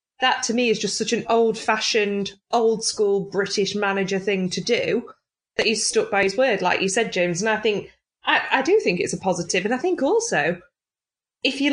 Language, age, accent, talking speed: English, 20-39, British, 205 wpm